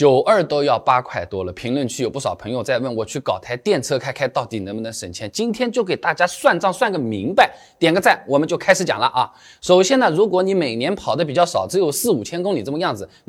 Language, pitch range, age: Chinese, 140-220 Hz, 20-39